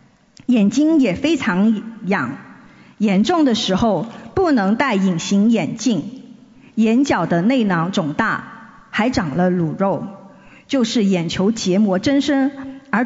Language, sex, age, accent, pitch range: Chinese, female, 50-69, native, 205-265 Hz